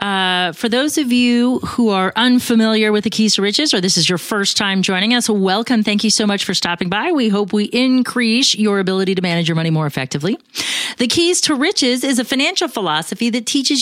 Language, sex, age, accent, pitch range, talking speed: English, female, 40-59, American, 180-250 Hz, 220 wpm